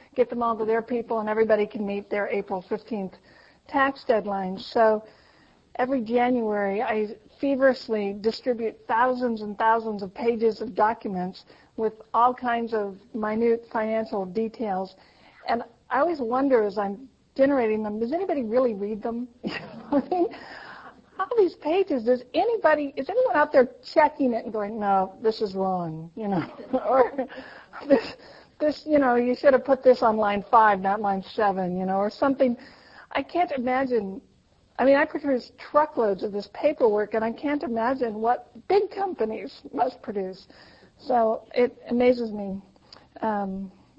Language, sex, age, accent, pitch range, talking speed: English, female, 50-69, American, 210-255 Hz, 150 wpm